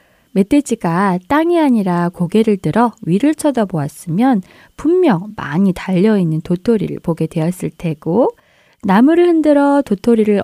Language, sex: Korean, female